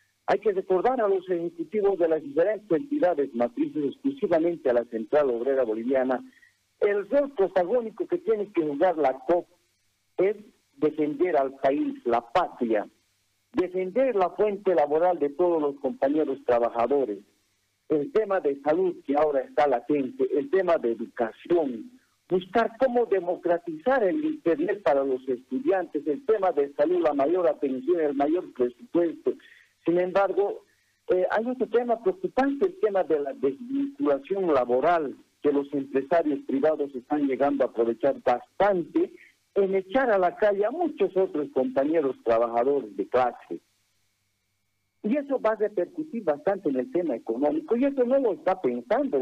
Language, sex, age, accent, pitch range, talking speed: Spanish, male, 50-69, Mexican, 130-215 Hz, 150 wpm